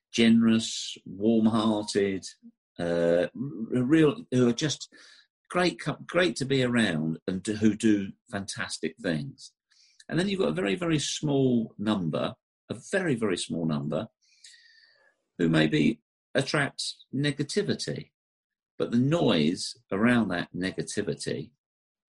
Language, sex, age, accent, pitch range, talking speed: English, male, 50-69, British, 85-135 Hz, 115 wpm